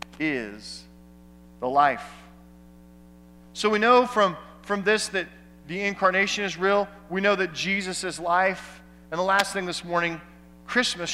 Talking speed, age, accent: 145 wpm, 40-59, American